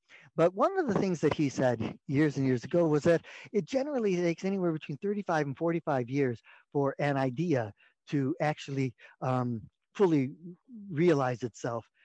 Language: English